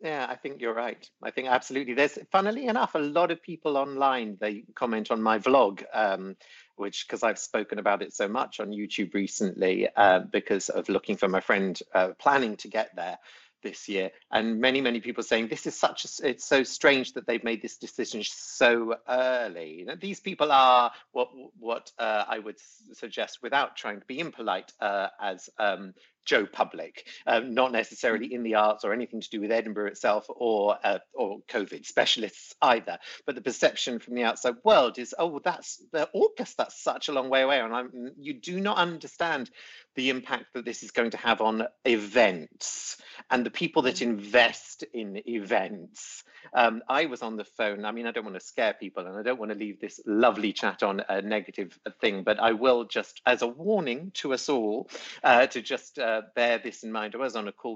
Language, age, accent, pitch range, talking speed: English, 50-69, British, 110-135 Hz, 205 wpm